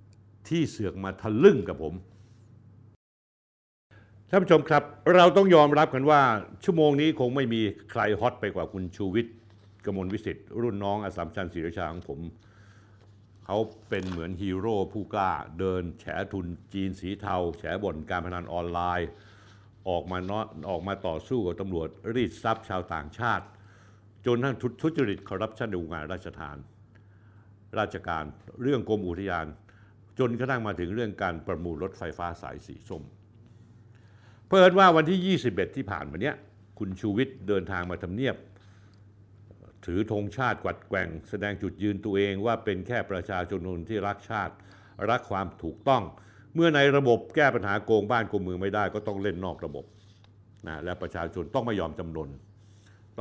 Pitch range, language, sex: 95-110 Hz, Thai, male